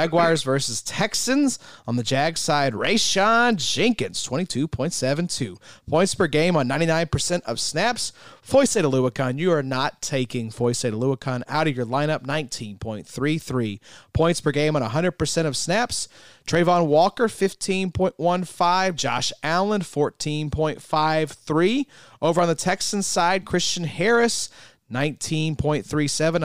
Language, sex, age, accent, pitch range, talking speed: English, male, 30-49, American, 135-175 Hz, 155 wpm